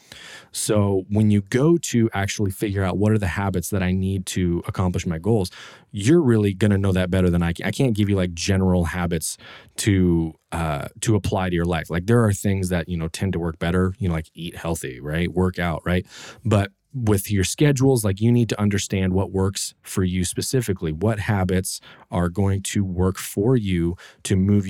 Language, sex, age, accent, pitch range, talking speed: English, male, 20-39, American, 90-110 Hz, 210 wpm